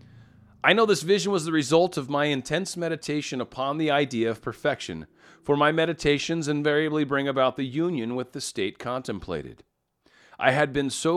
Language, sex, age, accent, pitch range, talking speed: English, male, 40-59, American, 120-155 Hz, 170 wpm